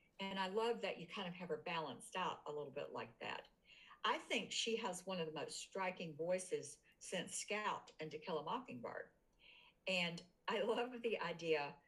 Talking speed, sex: 190 wpm, female